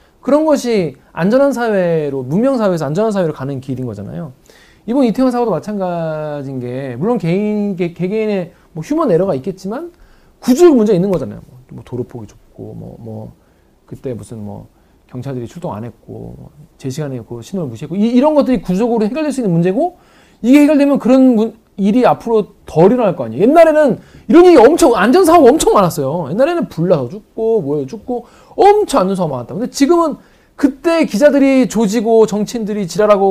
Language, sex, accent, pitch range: Korean, male, native, 160-255 Hz